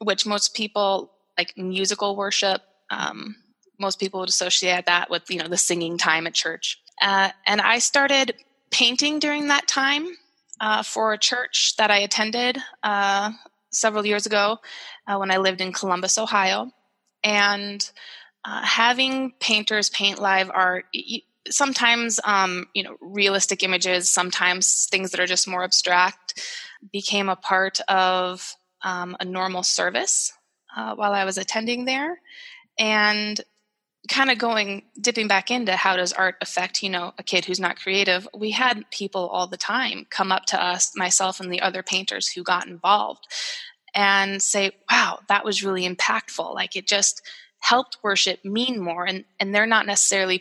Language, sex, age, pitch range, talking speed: English, female, 20-39, 185-220 Hz, 160 wpm